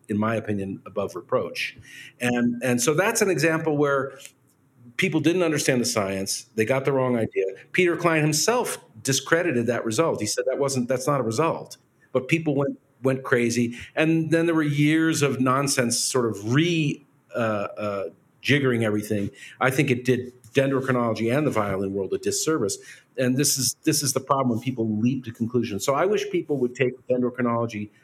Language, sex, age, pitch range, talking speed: English, male, 50-69, 115-145 Hz, 180 wpm